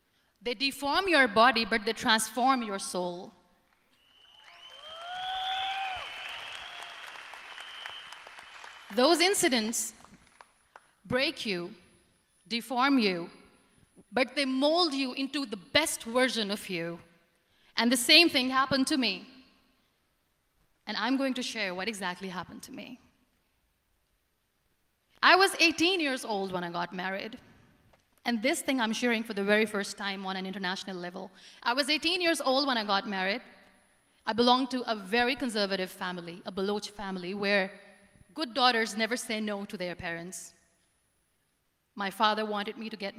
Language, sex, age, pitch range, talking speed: Hindi, female, 30-49, 190-265 Hz, 140 wpm